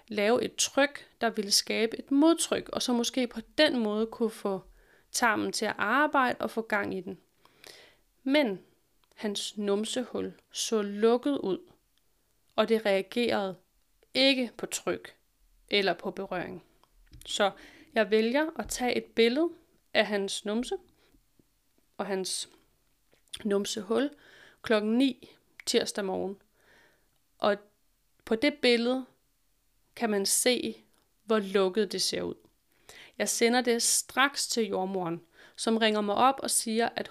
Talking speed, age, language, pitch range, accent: 135 wpm, 30-49, Danish, 205-255 Hz, native